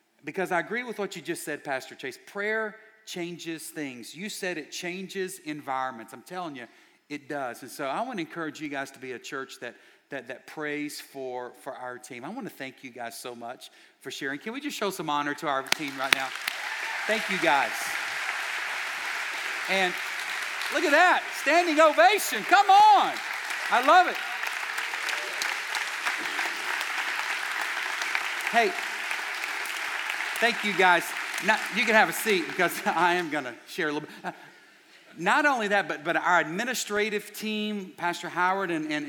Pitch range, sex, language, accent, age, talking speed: 140-200 Hz, male, English, American, 50-69, 165 wpm